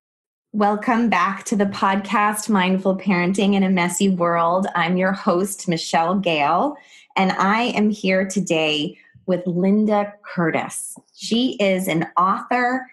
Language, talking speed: English, 130 wpm